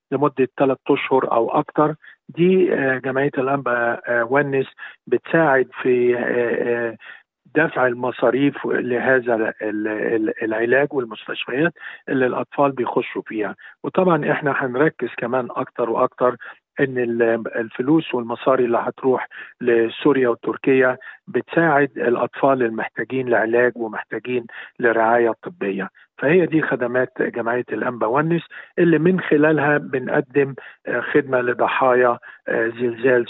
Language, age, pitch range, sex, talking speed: Arabic, 50-69, 120-140 Hz, male, 95 wpm